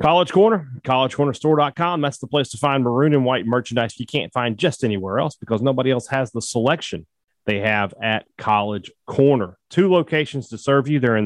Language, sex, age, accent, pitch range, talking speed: English, male, 30-49, American, 110-145 Hz, 190 wpm